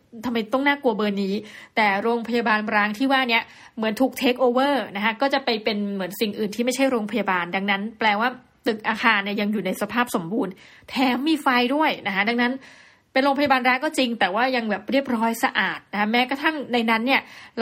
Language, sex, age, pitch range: Thai, female, 20-39, 210-270 Hz